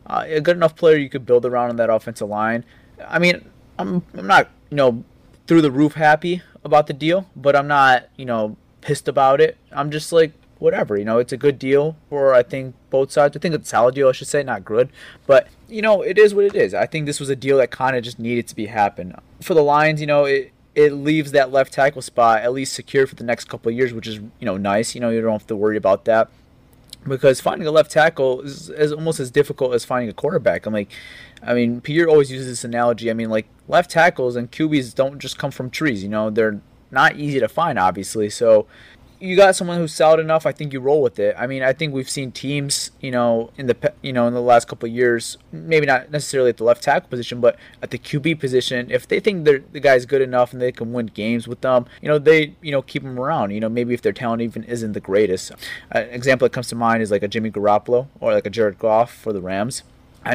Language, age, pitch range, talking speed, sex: English, 20-39, 120-150 Hz, 260 wpm, male